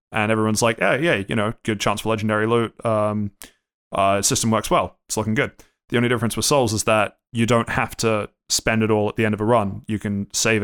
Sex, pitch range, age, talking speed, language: male, 105-125 Hz, 20-39, 250 wpm, English